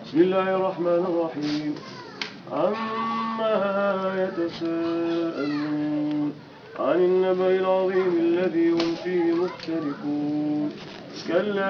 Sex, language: male, English